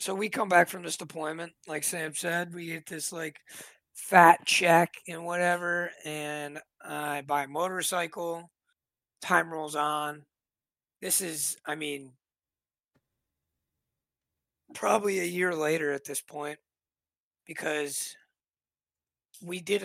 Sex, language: male, English